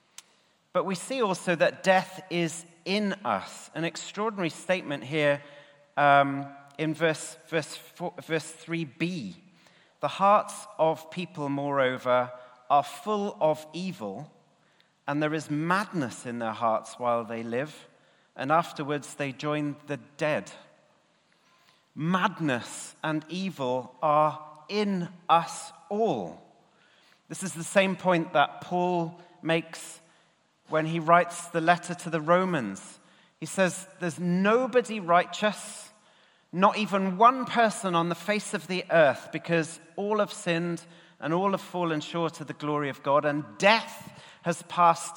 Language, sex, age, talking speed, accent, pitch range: English, male, 40-59, 135 wpm, British, 150-185 Hz